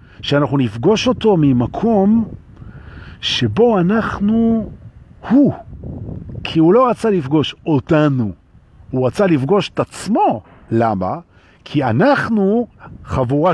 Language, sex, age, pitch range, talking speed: Hebrew, male, 50-69, 110-170 Hz, 95 wpm